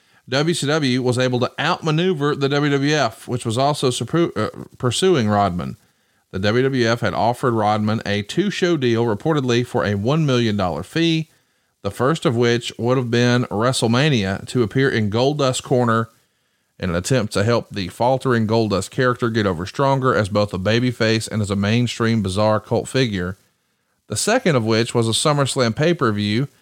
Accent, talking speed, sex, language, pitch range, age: American, 165 wpm, male, English, 110-140 Hz, 40-59